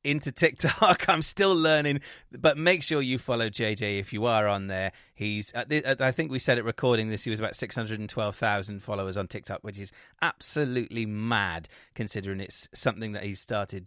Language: English